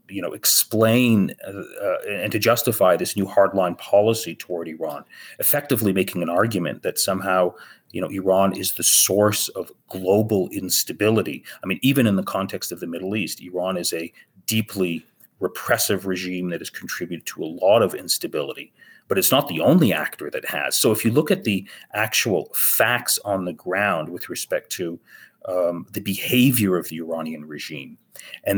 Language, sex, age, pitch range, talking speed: English, male, 30-49, 90-105 Hz, 175 wpm